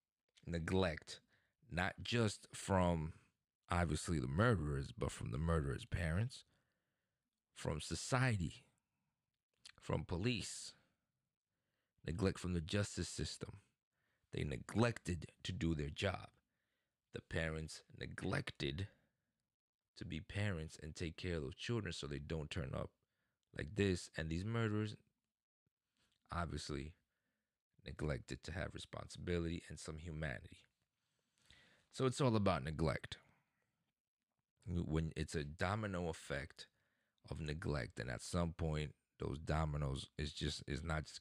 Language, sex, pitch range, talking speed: English, male, 75-100 Hz, 115 wpm